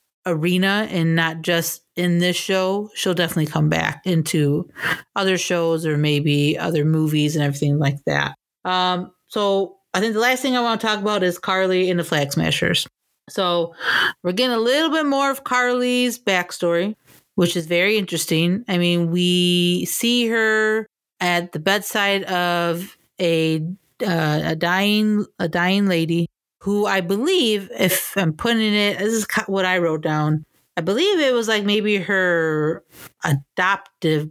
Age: 30-49